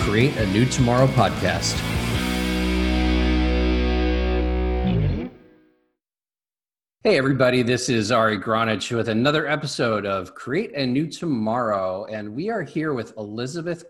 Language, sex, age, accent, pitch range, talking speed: English, male, 40-59, American, 105-145 Hz, 110 wpm